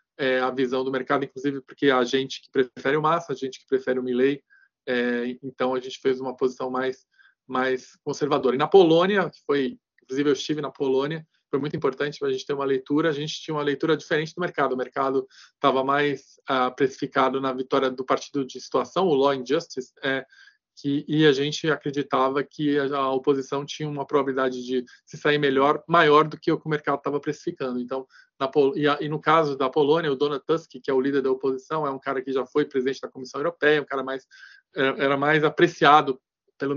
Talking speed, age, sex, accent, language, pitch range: 220 wpm, 20-39, male, Brazilian, Portuguese, 135-150 Hz